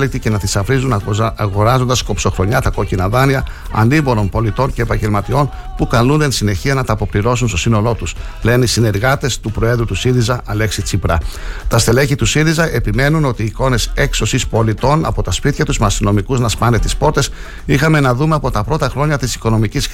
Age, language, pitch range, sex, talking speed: 60-79, Greek, 105-135 Hz, male, 180 wpm